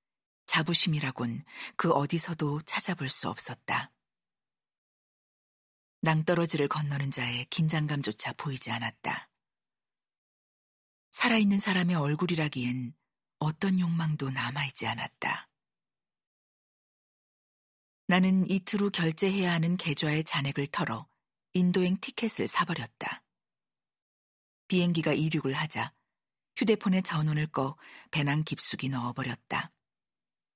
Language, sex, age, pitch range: Korean, female, 40-59, 140-185 Hz